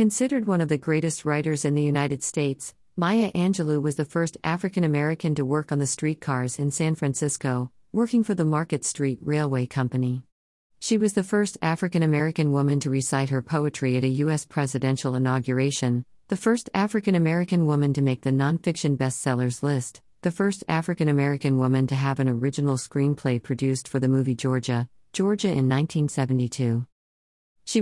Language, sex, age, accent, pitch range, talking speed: English, female, 40-59, American, 130-160 Hz, 160 wpm